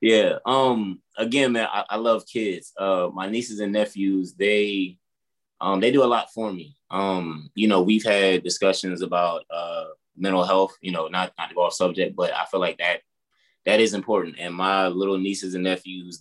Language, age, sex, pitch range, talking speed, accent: English, 20-39, male, 90-110 Hz, 195 wpm, American